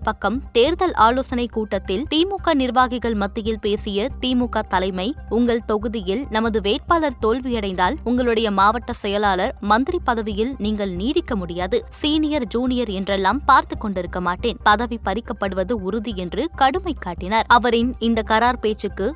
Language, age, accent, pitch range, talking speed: Tamil, 20-39, native, 200-255 Hz, 120 wpm